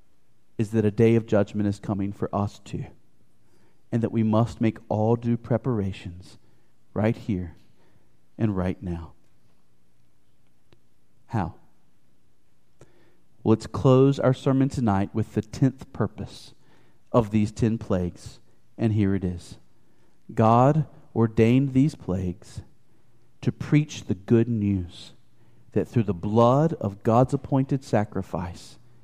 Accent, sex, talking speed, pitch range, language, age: American, male, 120 wpm, 105-155 Hz, English, 40-59